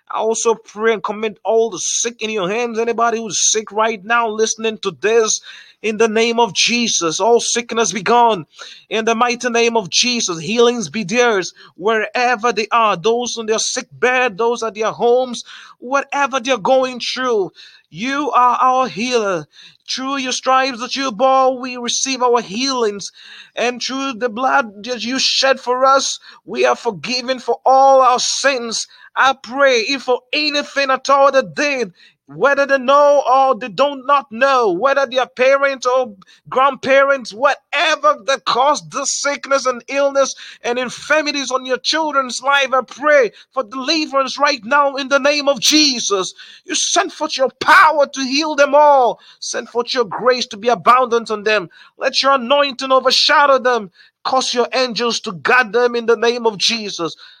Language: Finnish